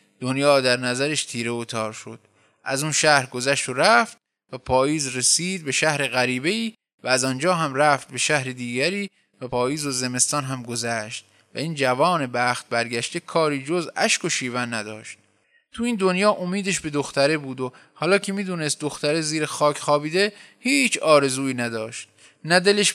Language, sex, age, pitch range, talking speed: Persian, male, 20-39, 125-180 Hz, 170 wpm